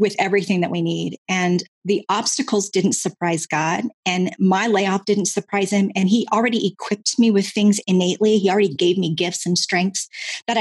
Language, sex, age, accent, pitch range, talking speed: English, female, 30-49, American, 190-245 Hz, 185 wpm